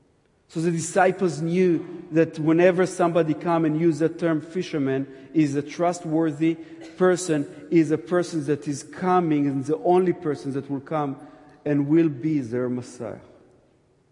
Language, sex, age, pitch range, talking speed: English, male, 50-69, 125-155 Hz, 155 wpm